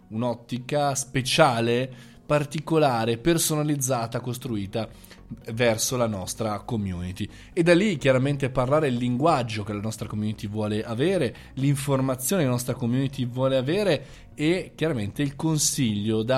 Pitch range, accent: 115-150 Hz, native